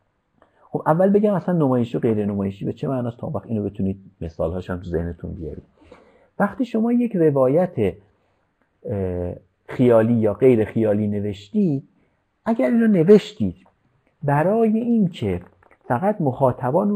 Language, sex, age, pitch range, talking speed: Persian, male, 50-69, 100-150 Hz, 125 wpm